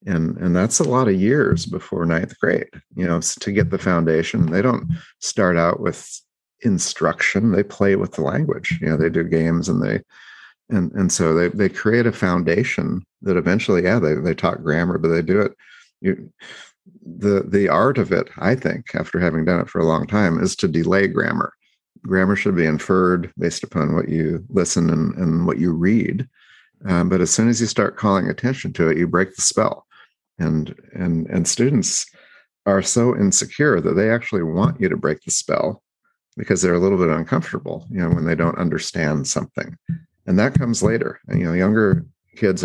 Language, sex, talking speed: English, male, 195 wpm